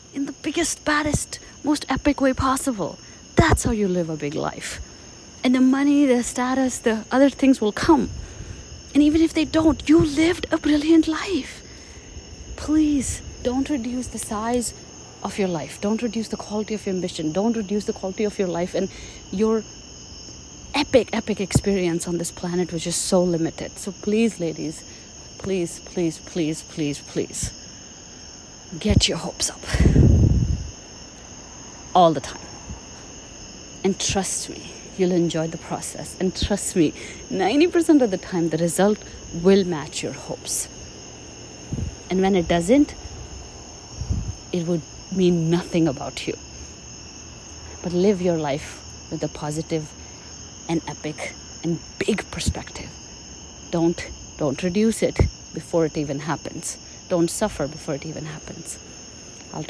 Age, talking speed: 30-49, 140 wpm